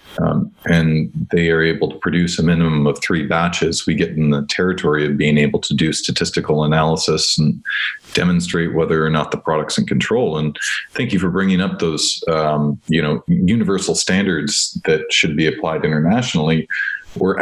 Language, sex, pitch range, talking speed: English, male, 75-120 Hz, 175 wpm